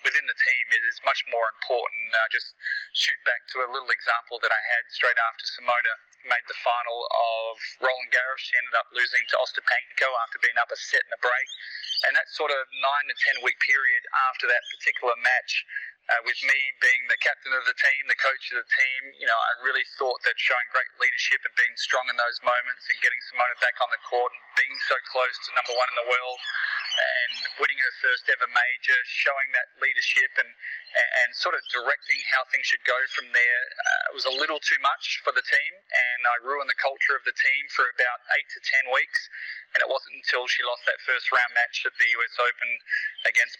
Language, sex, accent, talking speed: English, male, Australian, 220 wpm